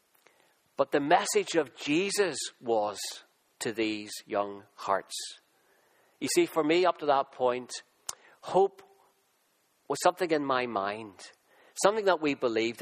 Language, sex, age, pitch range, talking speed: English, male, 40-59, 135-185 Hz, 130 wpm